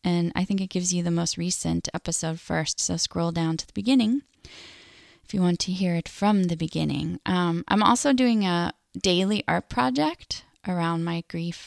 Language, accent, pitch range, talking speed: English, American, 170-210 Hz, 190 wpm